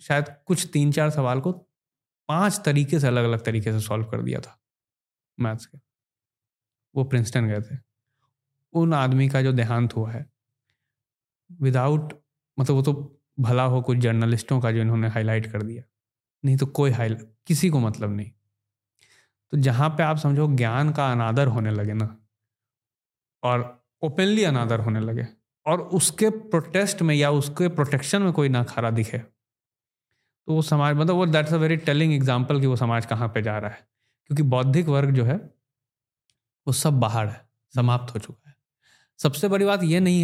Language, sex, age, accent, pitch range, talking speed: Hindi, male, 20-39, native, 115-145 Hz, 170 wpm